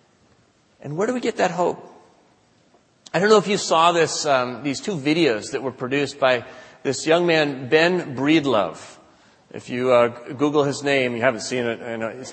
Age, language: 40-59, English